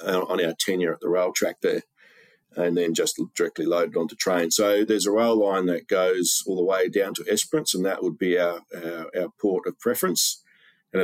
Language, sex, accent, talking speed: English, male, Australian, 210 wpm